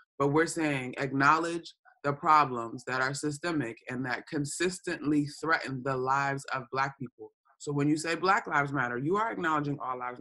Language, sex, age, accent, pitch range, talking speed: English, male, 20-39, American, 130-150 Hz, 175 wpm